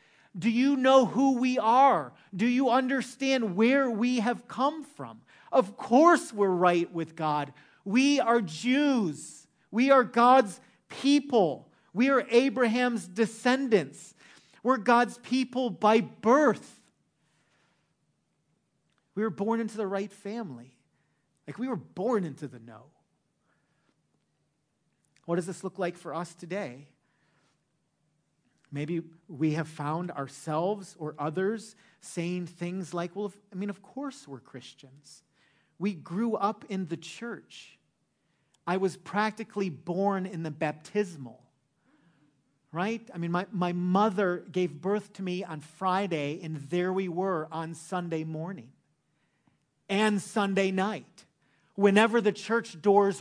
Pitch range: 160-230 Hz